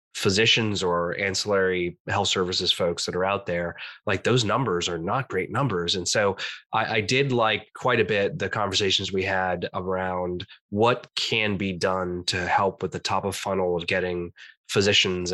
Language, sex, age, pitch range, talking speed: English, male, 20-39, 90-105 Hz, 175 wpm